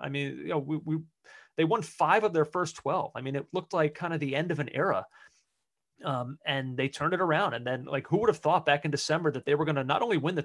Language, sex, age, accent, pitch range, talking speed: English, male, 30-49, American, 145-195 Hz, 285 wpm